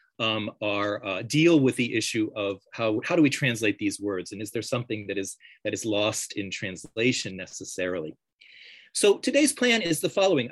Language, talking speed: English, 190 wpm